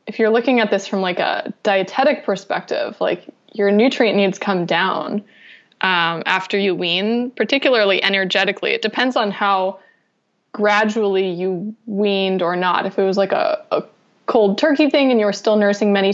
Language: English